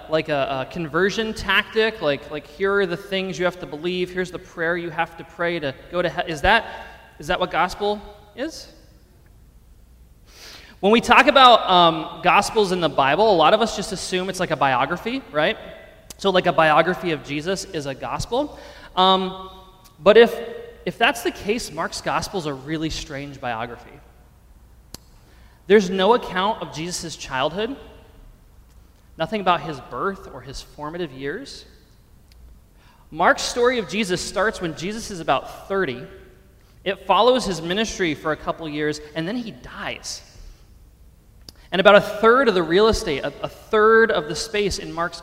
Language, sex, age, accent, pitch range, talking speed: English, male, 20-39, American, 150-200 Hz, 170 wpm